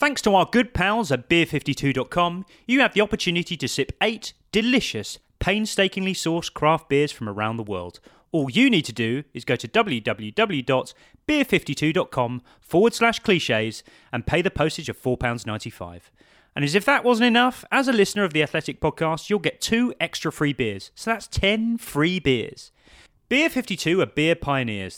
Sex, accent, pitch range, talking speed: male, British, 130-195 Hz, 165 wpm